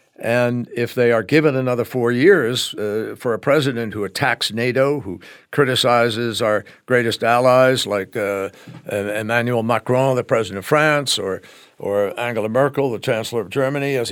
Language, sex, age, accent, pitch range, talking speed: English, male, 60-79, American, 115-150 Hz, 155 wpm